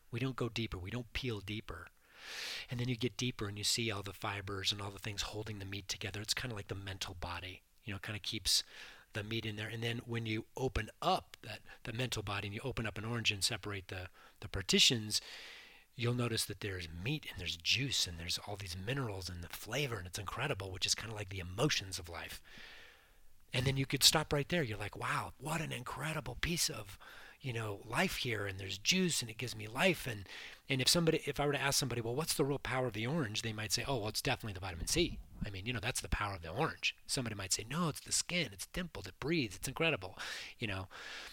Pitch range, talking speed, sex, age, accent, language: 95-130 Hz, 250 wpm, male, 30-49, American, English